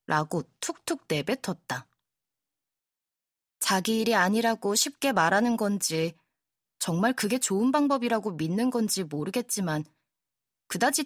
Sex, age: female, 20-39